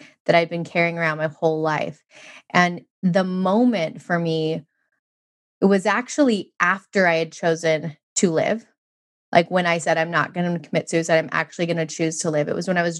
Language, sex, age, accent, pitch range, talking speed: English, female, 20-39, American, 165-195 Hz, 205 wpm